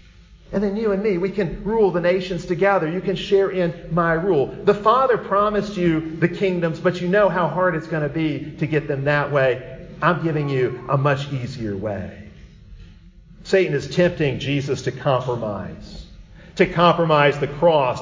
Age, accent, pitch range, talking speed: 50-69, American, 145-200 Hz, 180 wpm